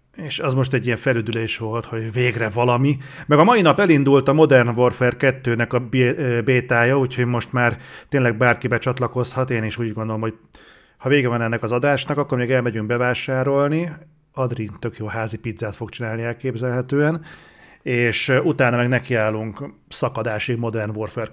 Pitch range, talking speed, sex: 115-130 Hz, 165 wpm, male